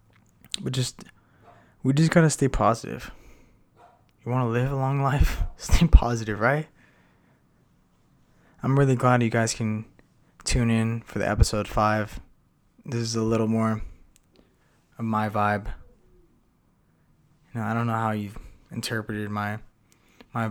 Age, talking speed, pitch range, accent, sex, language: 20-39, 140 wpm, 105-120 Hz, American, male, English